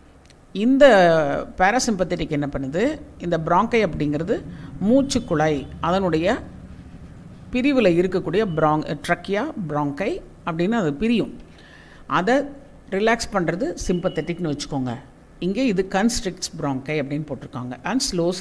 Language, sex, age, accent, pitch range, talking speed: Tamil, female, 50-69, native, 150-205 Hz, 100 wpm